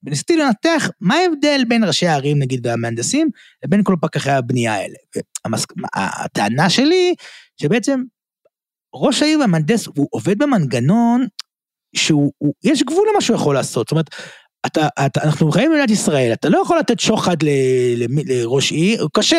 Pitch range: 140-220 Hz